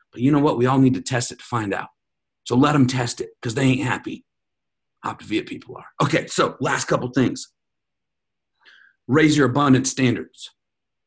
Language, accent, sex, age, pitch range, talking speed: English, American, male, 40-59, 120-150 Hz, 185 wpm